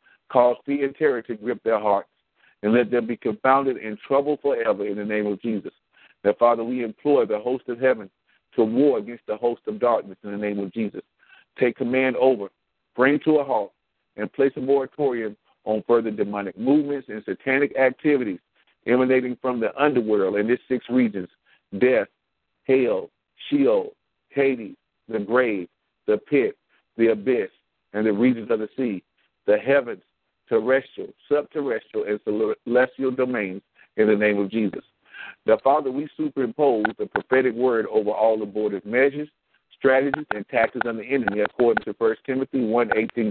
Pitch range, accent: 110-135 Hz, American